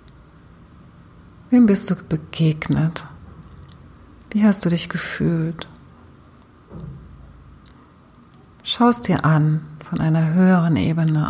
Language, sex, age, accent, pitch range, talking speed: German, female, 40-59, German, 155-180 Hz, 85 wpm